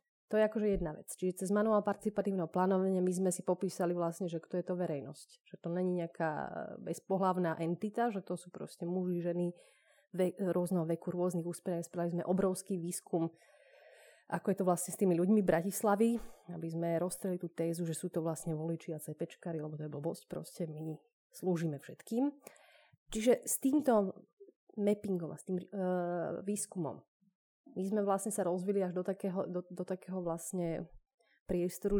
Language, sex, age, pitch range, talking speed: Slovak, female, 30-49, 165-195 Hz, 170 wpm